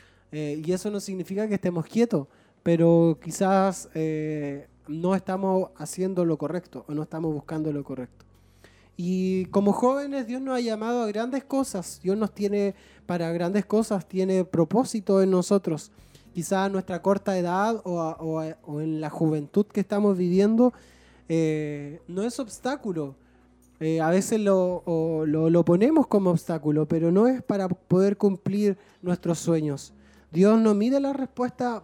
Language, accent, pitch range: Spanish, Argentinian, 160-205 Hz